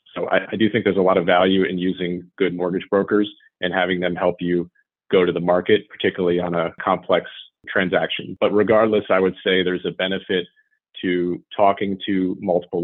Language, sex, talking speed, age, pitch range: English, male, 185 wpm, 30-49, 90-105 Hz